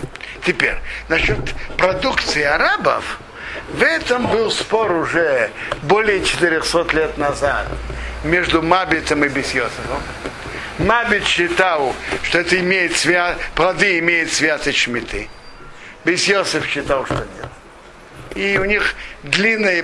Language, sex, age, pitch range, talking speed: Russian, male, 60-79, 145-190 Hz, 105 wpm